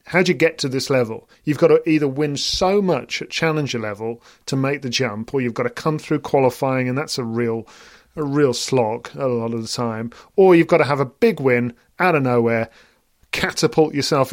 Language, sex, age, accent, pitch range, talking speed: English, male, 40-59, British, 125-160 Hz, 220 wpm